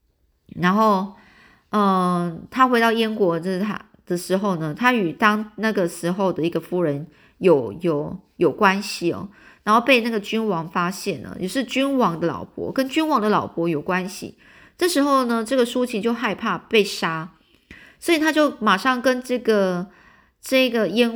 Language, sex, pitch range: Chinese, female, 185-250 Hz